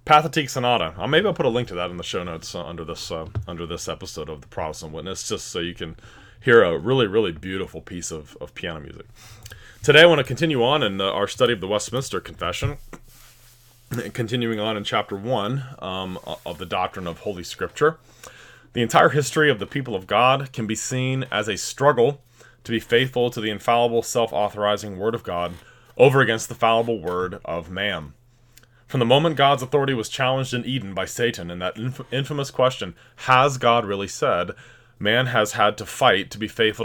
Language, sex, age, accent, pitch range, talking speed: English, male, 30-49, American, 105-130 Hz, 195 wpm